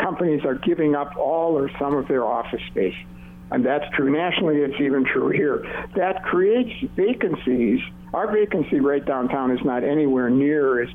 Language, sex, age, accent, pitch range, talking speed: English, male, 60-79, American, 130-185 Hz, 170 wpm